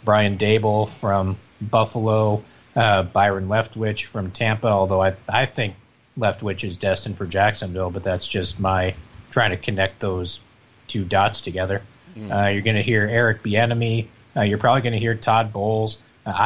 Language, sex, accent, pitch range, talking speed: English, male, American, 100-120 Hz, 165 wpm